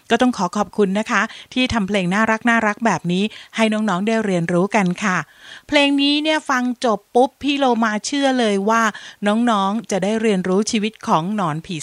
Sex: female